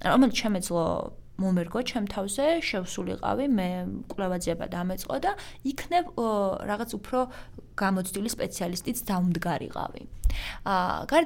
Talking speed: 135 wpm